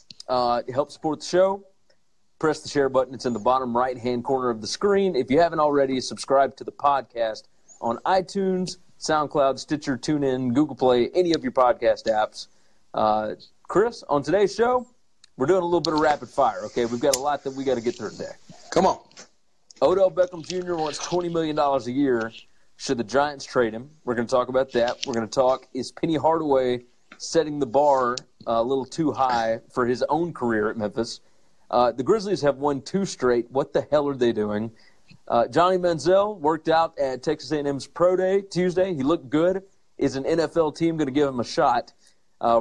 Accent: American